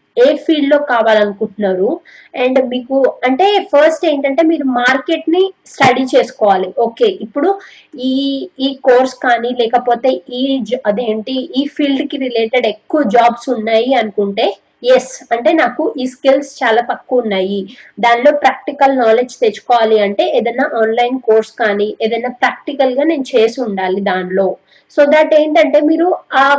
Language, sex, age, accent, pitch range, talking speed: Telugu, female, 20-39, native, 235-295 Hz, 135 wpm